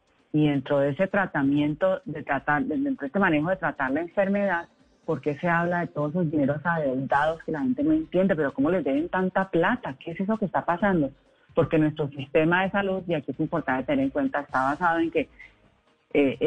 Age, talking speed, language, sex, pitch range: 30-49, 210 wpm, Spanish, female, 155-190 Hz